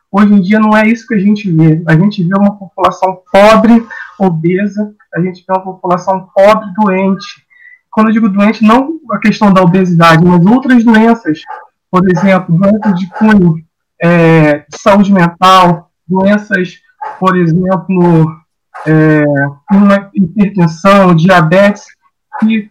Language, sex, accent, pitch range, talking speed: Portuguese, male, Brazilian, 170-220 Hz, 135 wpm